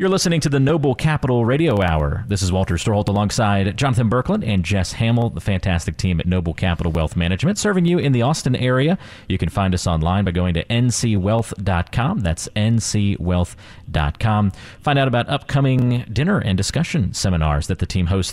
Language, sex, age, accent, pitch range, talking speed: English, male, 30-49, American, 90-120 Hz, 180 wpm